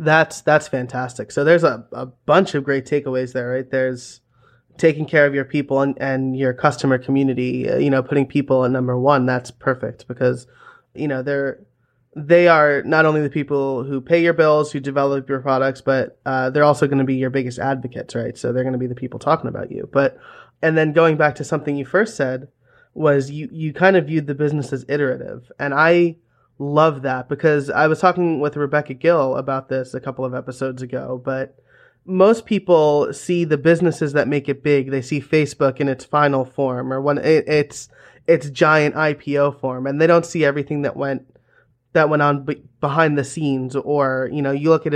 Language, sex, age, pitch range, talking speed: English, male, 20-39, 130-155 Hz, 205 wpm